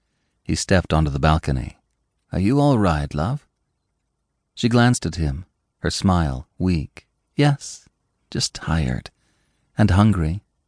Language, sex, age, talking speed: English, male, 40-59, 125 wpm